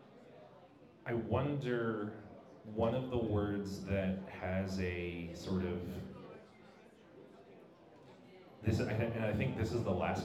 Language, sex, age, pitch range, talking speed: English, male, 30-49, 90-100 Hz, 110 wpm